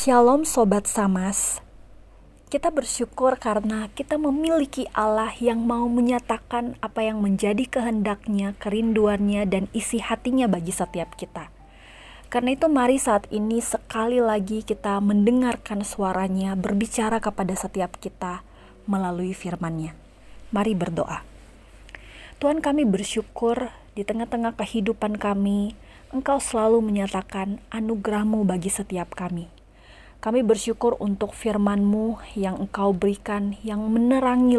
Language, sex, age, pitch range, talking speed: Indonesian, female, 20-39, 195-230 Hz, 110 wpm